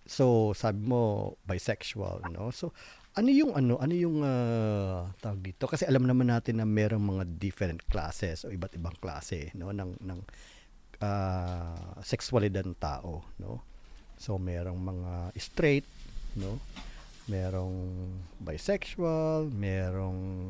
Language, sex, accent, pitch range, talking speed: Filipino, male, native, 90-125 Hz, 125 wpm